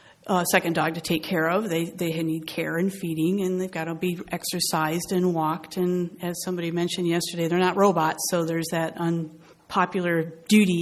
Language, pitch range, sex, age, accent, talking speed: English, 165-185 Hz, female, 40-59, American, 190 wpm